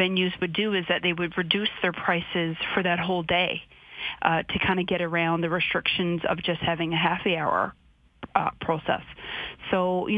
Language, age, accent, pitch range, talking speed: English, 30-49, American, 170-200 Hz, 190 wpm